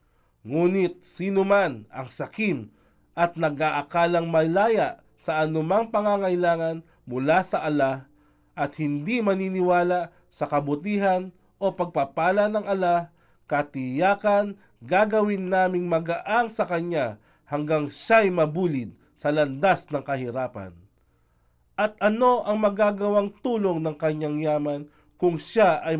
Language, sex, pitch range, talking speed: Filipino, male, 140-195 Hz, 105 wpm